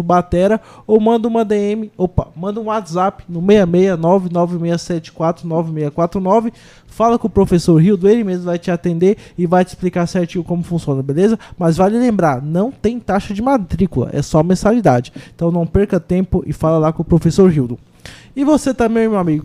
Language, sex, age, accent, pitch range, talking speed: Portuguese, male, 20-39, Brazilian, 170-215 Hz, 175 wpm